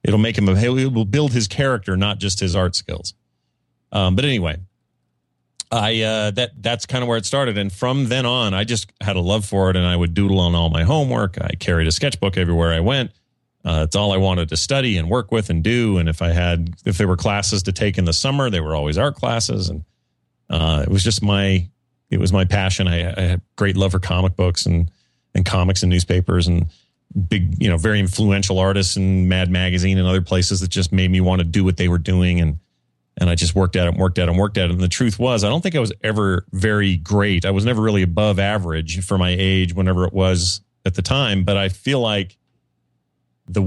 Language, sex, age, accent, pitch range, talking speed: English, male, 30-49, American, 90-110 Hz, 240 wpm